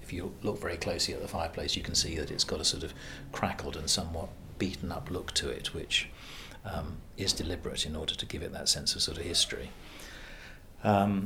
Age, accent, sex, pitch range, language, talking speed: 40-59, British, male, 80-100 Hz, English, 220 wpm